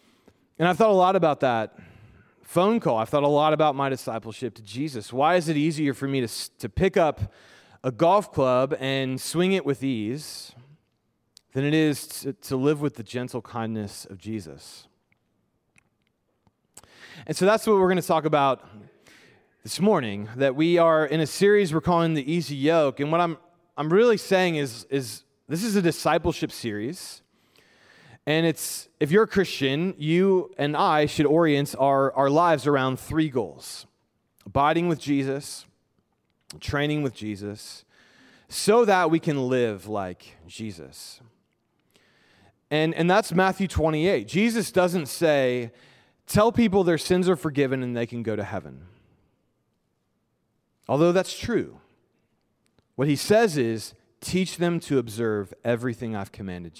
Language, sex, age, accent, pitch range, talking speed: English, male, 30-49, American, 120-170 Hz, 155 wpm